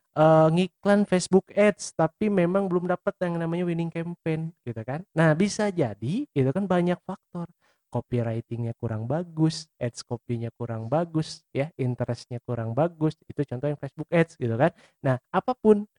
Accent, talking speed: native, 155 wpm